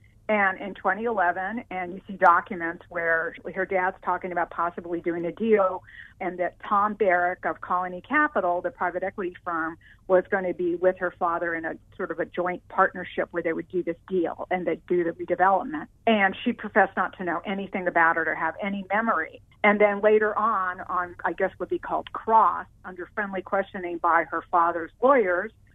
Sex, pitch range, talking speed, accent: female, 175-225 Hz, 195 wpm, American